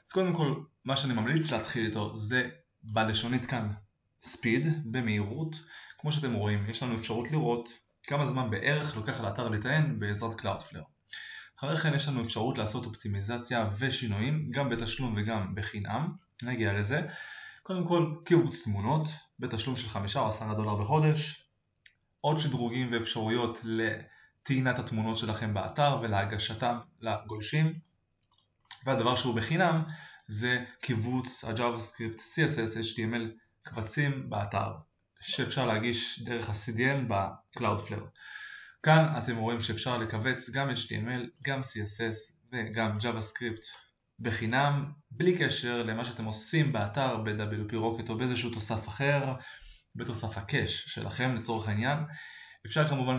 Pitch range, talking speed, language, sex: 110-135 Hz, 125 wpm, Hebrew, male